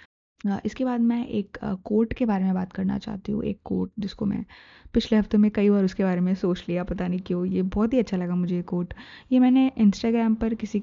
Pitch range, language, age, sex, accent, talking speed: 185-210 Hz, Hindi, 20-39, female, native, 235 wpm